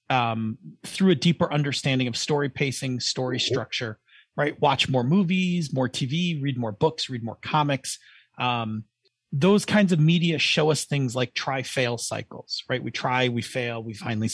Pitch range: 130-190 Hz